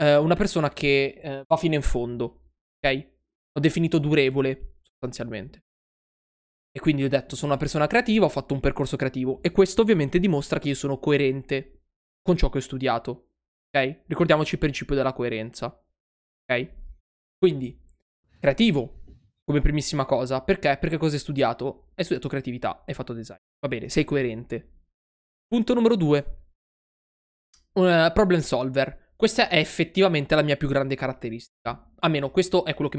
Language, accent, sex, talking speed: Italian, native, male, 155 wpm